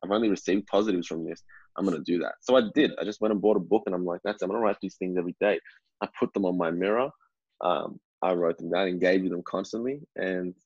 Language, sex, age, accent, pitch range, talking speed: English, male, 20-39, Australian, 95-110 Hz, 280 wpm